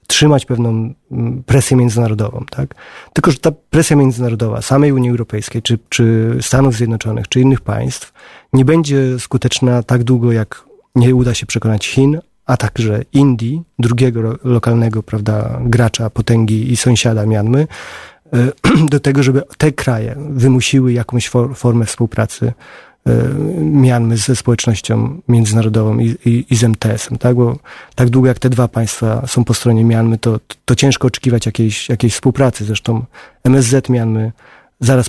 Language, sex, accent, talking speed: Polish, male, native, 140 wpm